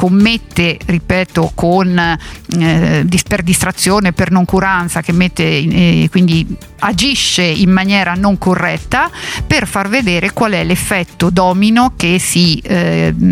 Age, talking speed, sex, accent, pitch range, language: 50-69, 125 wpm, female, native, 170-195 Hz, Italian